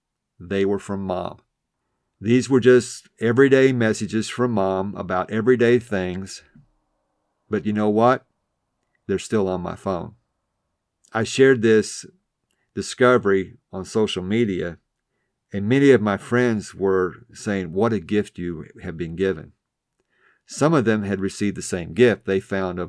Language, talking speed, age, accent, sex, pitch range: English, 145 wpm, 50-69, American, male, 95-120 Hz